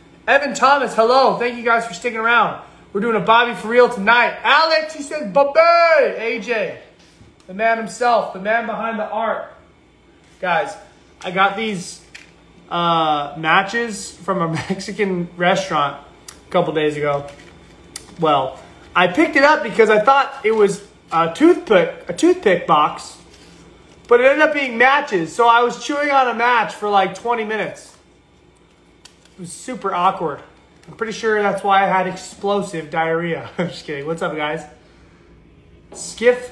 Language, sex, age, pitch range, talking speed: English, male, 20-39, 185-245 Hz, 155 wpm